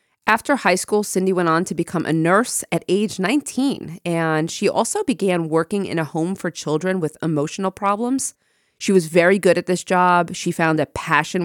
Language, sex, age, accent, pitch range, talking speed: English, female, 30-49, American, 155-195 Hz, 195 wpm